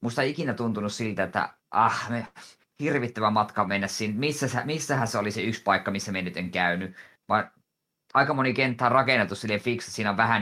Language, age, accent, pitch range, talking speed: Finnish, 20-39, native, 95-120 Hz, 205 wpm